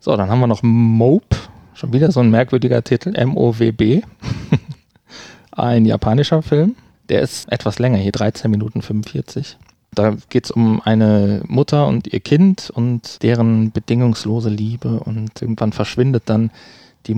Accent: German